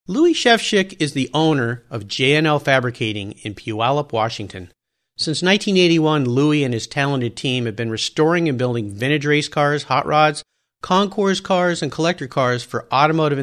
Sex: male